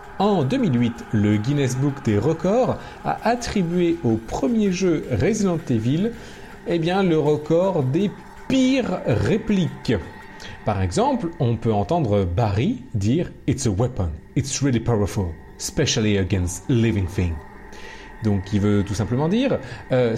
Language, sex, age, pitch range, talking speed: French, male, 40-59, 105-170 Hz, 130 wpm